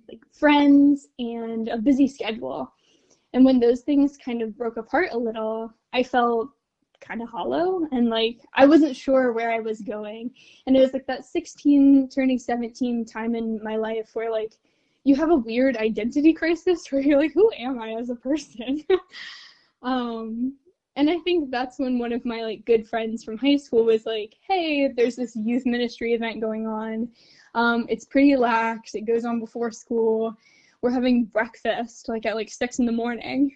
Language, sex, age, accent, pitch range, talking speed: English, female, 10-29, American, 225-275 Hz, 180 wpm